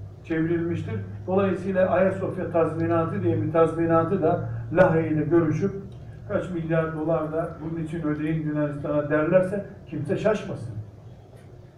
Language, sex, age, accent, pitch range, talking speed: Turkish, male, 60-79, native, 140-185 Hz, 105 wpm